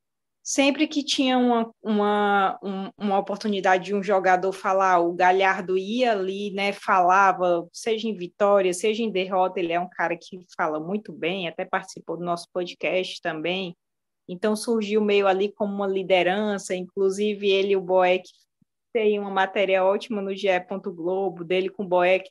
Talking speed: 160 wpm